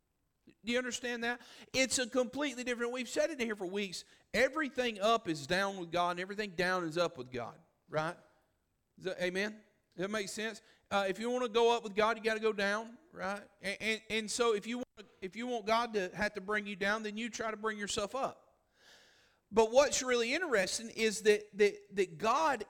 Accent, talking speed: American, 215 wpm